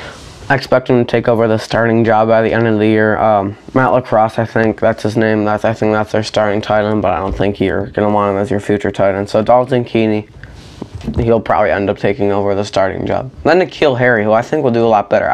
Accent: American